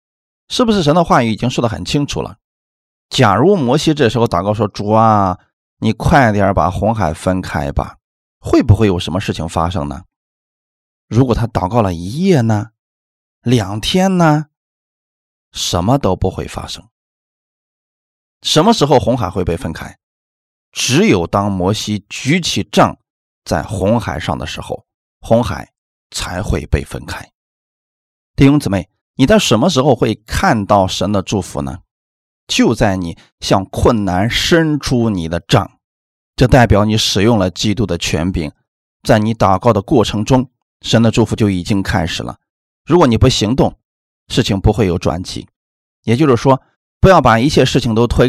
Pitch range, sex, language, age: 85-125 Hz, male, Chinese, 20-39